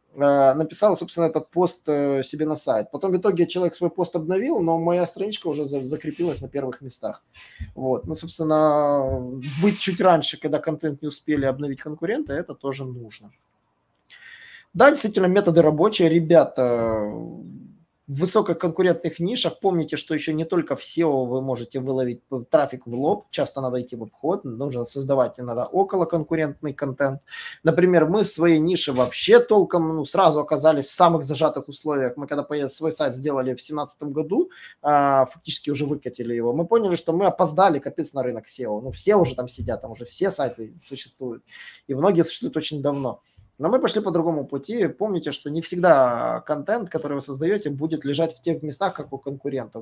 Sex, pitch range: male, 130-170 Hz